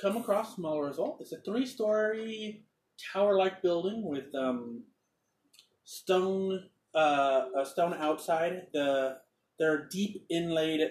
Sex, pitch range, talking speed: male, 130-170 Hz, 115 wpm